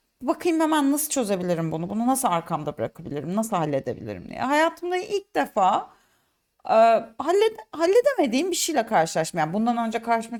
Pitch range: 200-305 Hz